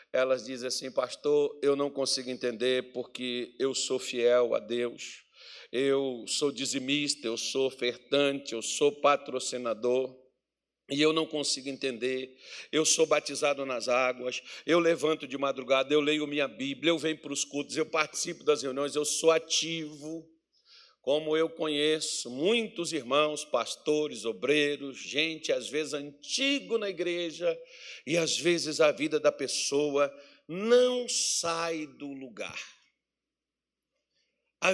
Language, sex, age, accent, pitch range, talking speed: Portuguese, male, 60-79, Brazilian, 140-225 Hz, 135 wpm